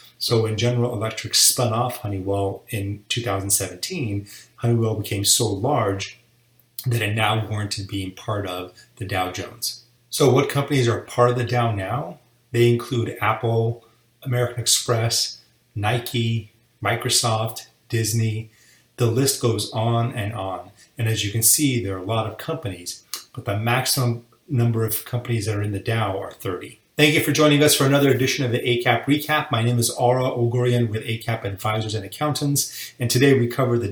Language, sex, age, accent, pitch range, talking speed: English, male, 30-49, American, 110-125 Hz, 170 wpm